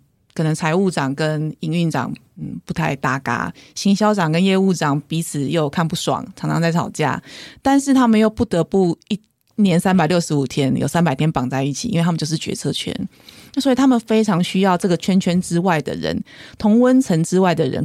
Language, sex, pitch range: Chinese, female, 155-205 Hz